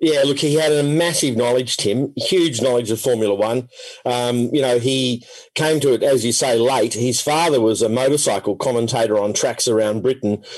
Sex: male